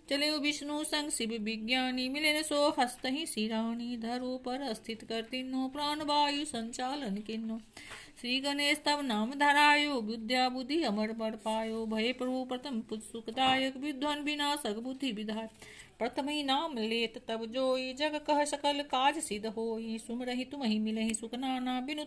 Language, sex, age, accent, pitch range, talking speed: Hindi, female, 50-69, native, 225-290 Hz, 140 wpm